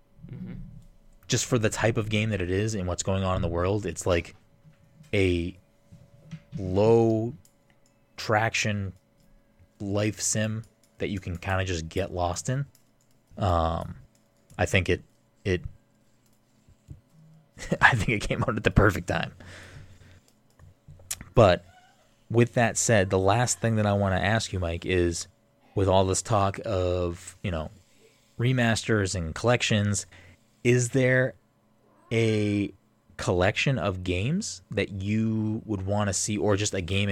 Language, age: English, 20-39